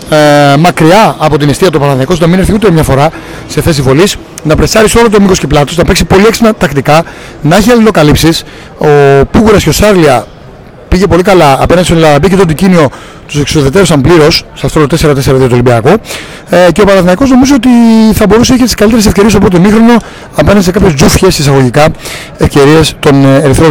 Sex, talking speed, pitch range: male, 190 wpm, 145-185 Hz